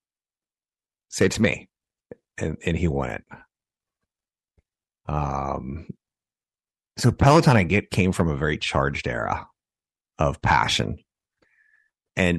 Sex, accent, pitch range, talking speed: male, American, 75-100 Hz, 105 wpm